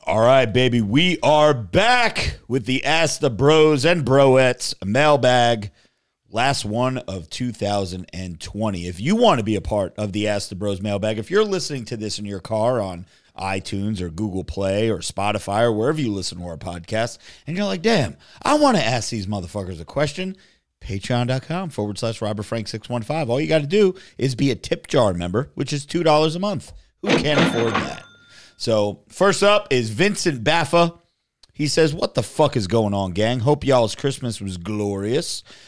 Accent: American